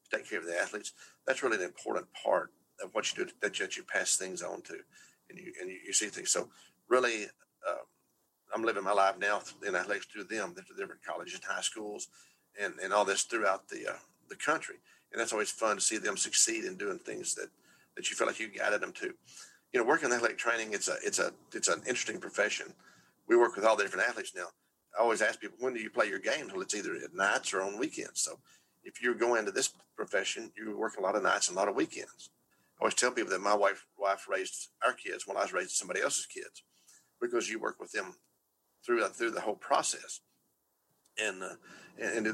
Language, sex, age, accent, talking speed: English, male, 40-59, American, 230 wpm